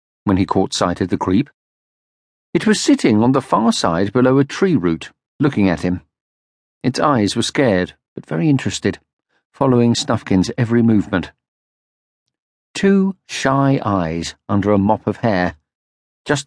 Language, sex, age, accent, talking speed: English, male, 50-69, British, 150 wpm